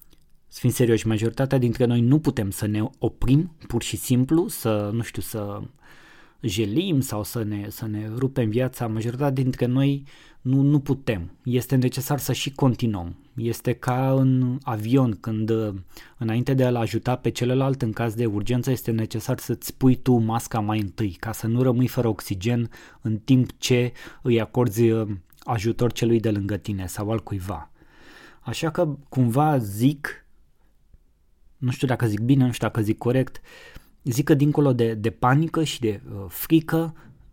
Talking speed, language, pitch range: 165 wpm, Romanian, 110-130 Hz